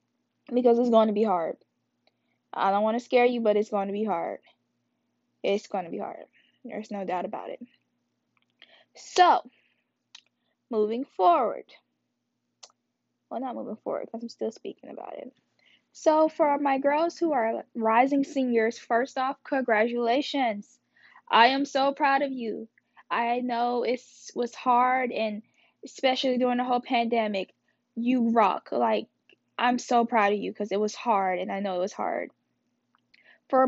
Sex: female